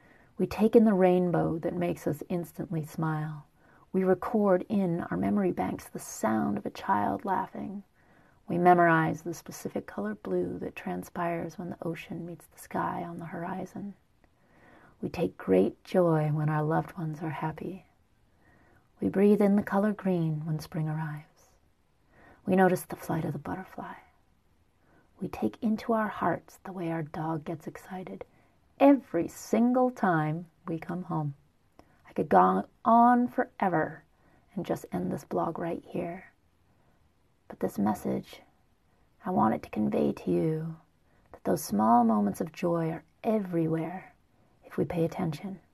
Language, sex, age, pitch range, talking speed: English, female, 30-49, 155-185 Hz, 150 wpm